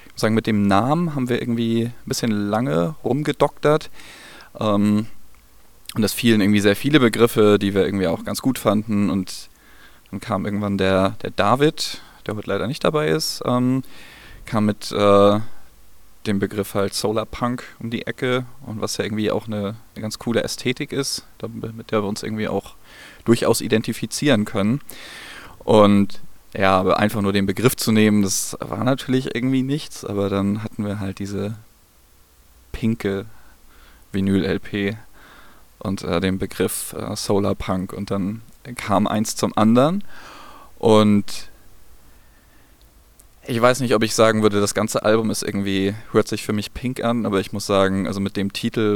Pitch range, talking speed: 100-115 Hz, 160 wpm